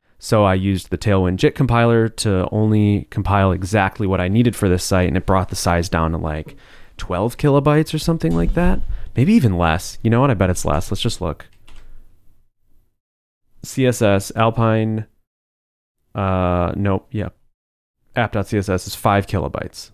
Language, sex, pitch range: English, male, 90-115 Hz